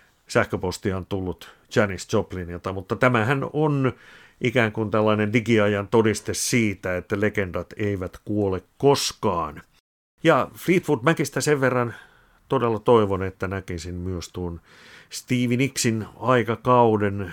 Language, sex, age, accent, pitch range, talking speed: Finnish, male, 50-69, native, 100-130 Hz, 115 wpm